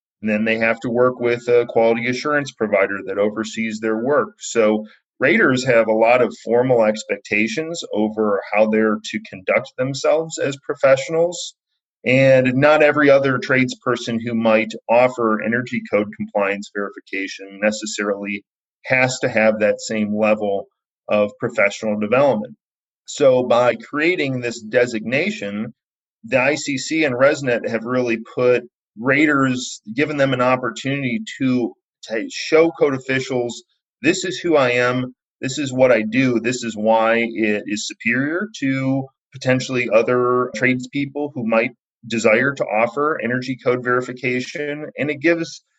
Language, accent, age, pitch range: English, American, 40-59, 110-140 Hz